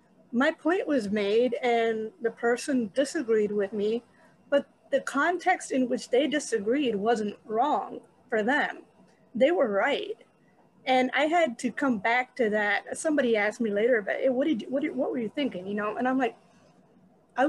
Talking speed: 160 wpm